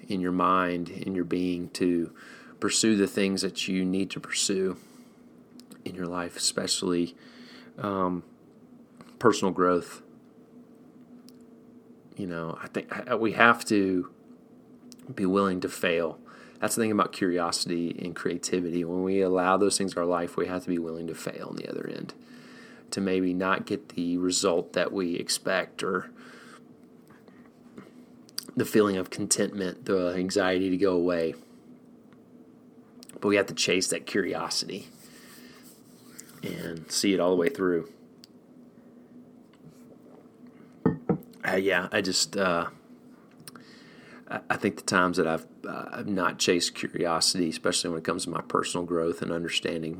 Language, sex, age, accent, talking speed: English, male, 30-49, American, 145 wpm